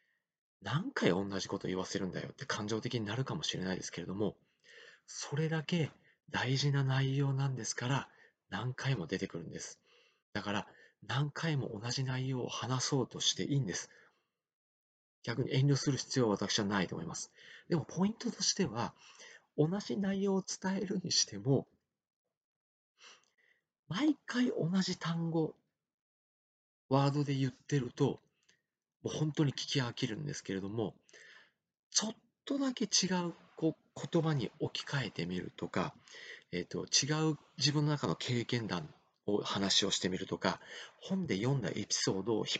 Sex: male